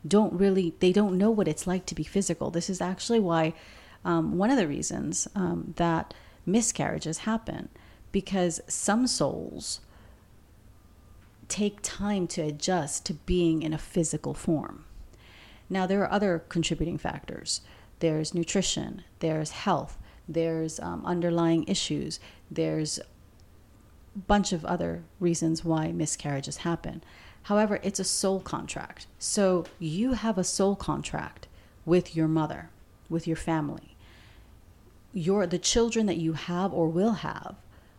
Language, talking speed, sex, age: English, 135 wpm, female, 40-59